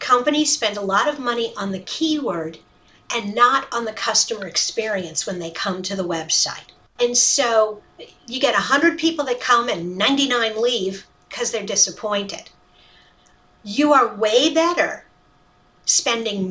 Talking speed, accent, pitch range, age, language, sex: 145 wpm, American, 195-280 Hz, 50-69, English, female